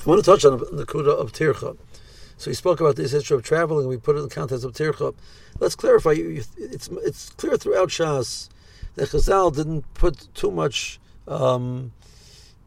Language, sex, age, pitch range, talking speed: English, male, 60-79, 130-170 Hz, 195 wpm